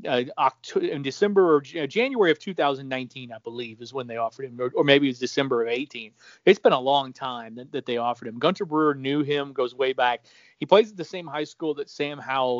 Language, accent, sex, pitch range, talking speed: English, American, male, 130-170 Hz, 230 wpm